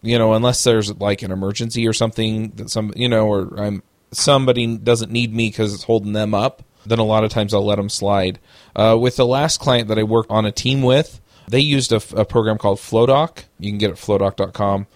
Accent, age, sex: American, 30-49, male